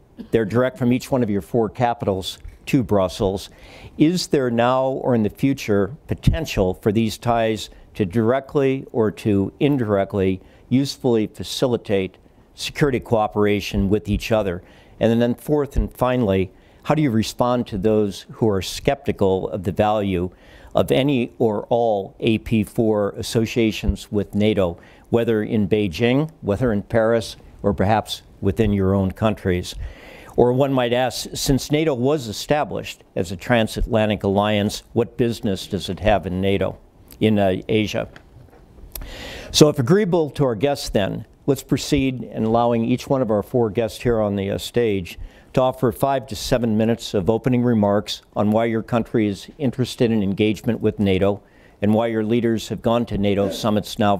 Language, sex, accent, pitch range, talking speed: English, male, American, 100-125 Hz, 160 wpm